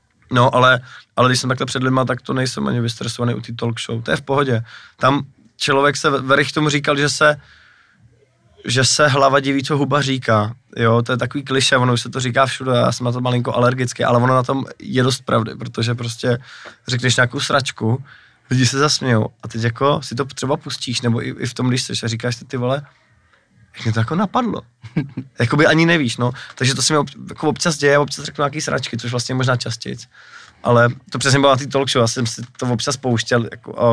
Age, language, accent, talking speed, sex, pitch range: 20-39, Czech, native, 220 wpm, male, 115-135 Hz